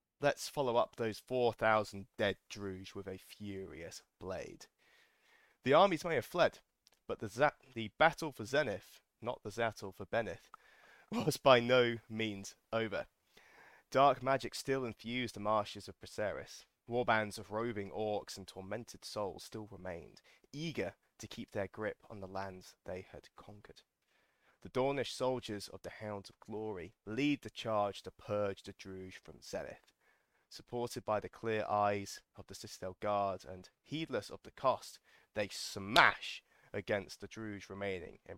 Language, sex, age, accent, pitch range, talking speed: English, male, 20-39, British, 100-120 Hz, 155 wpm